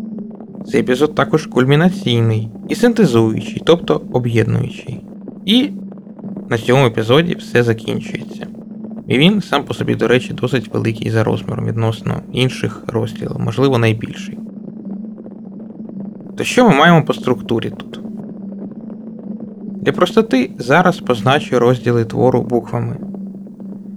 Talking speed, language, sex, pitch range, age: 110 wpm, Ukrainian, male, 125-215 Hz, 20-39